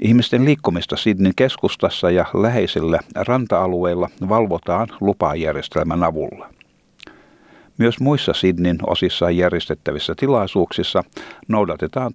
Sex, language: male, Finnish